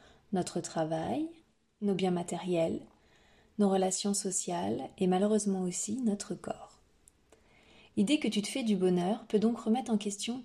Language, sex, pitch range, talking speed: French, female, 185-220 Hz, 145 wpm